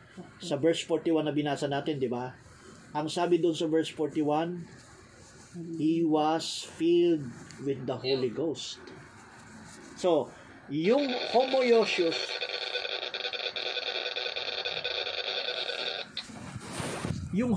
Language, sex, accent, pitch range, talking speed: Filipino, male, native, 130-195 Hz, 85 wpm